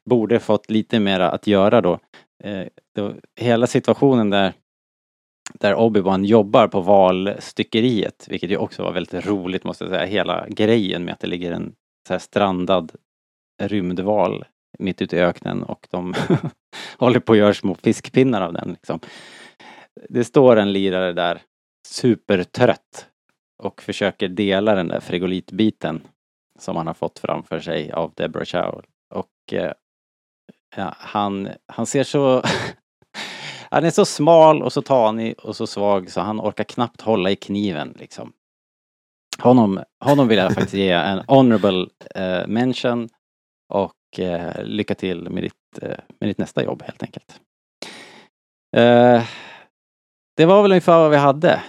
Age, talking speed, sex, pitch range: 30-49, 150 wpm, male, 95-120 Hz